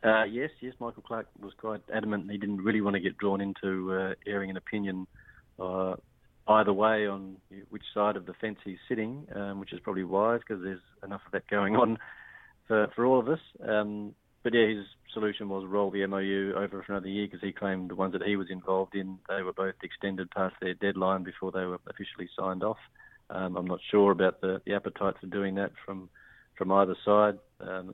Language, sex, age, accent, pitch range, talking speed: English, male, 40-59, Australian, 95-105 Hz, 215 wpm